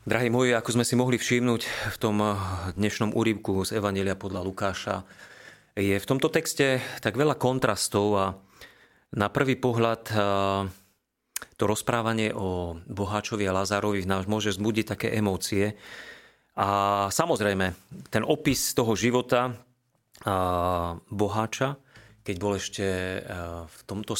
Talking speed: 120 wpm